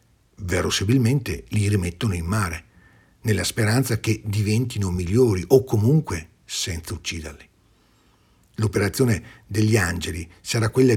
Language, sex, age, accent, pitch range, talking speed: Italian, male, 50-69, native, 95-125 Hz, 105 wpm